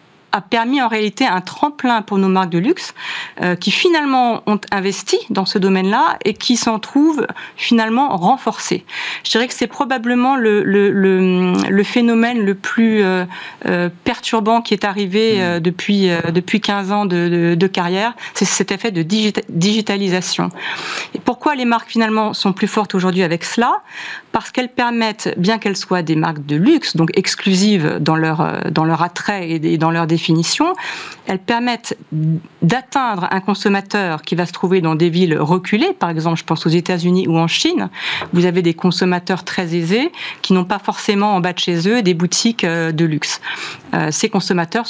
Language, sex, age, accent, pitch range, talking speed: French, female, 40-59, French, 175-220 Hz, 180 wpm